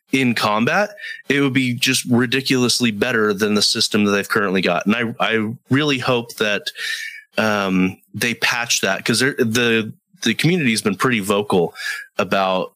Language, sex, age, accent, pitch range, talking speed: English, male, 30-49, American, 110-150 Hz, 160 wpm